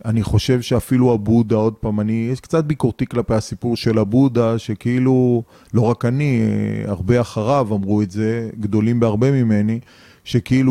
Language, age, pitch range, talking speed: Hebrew, 30-49, 110-130 Hz, 150 wpm